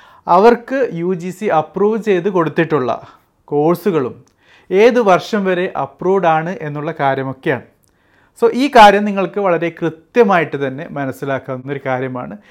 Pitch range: 150-210 Hz